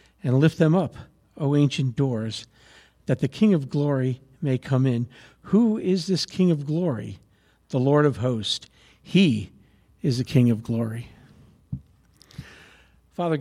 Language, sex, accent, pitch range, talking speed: English, male, American, 120-160 Hz, 145 wpm